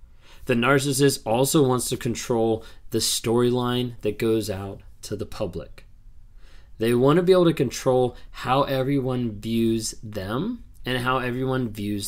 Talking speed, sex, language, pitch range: 145 wpm, male, English, 100-135 Hz